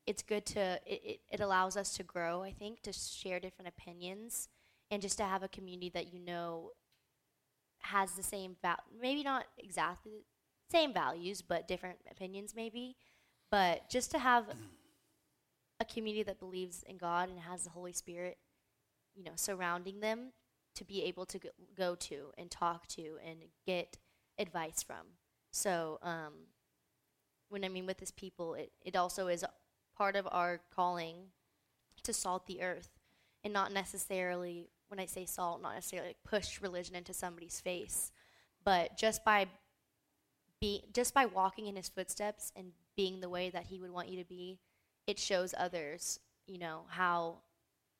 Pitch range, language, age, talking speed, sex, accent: 175-200 Hz, English, 10-29, 165 wpm, female, American